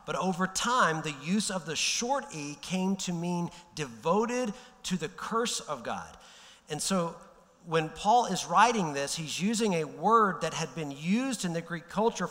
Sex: male